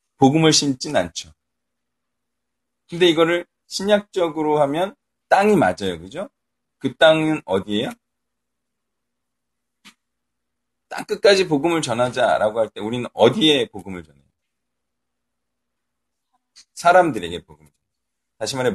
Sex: male